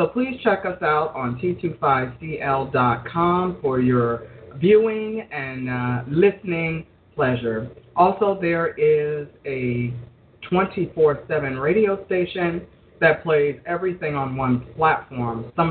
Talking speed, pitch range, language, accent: 105 wpm, 130-170 Hz, English, American